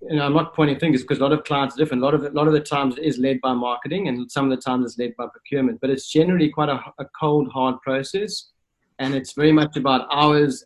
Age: 30-49